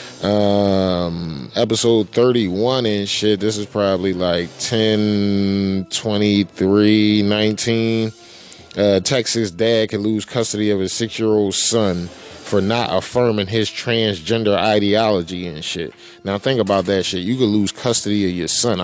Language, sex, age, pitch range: English, male, 20-39, 95-115 Hz